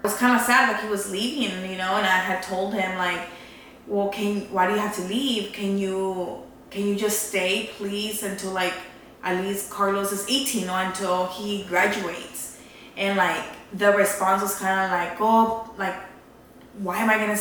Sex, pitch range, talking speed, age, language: female, 190-225 Hz, 205 wpm, 20-39, English